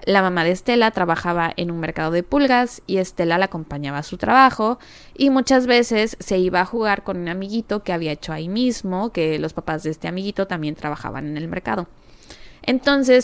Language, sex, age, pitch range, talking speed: Spanish, female, 20-39, 165-215 Hz, 200 wpm